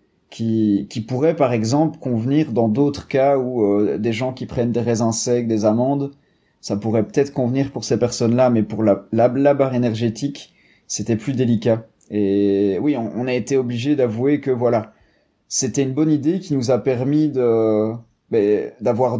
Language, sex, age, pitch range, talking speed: French, male, 30-49, 115-140 Hz, 180 wpm